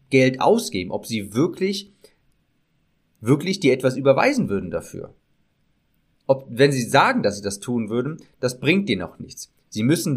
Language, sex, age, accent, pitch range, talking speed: German, male, 30-49, German, 115-140 Hz, 160 wpm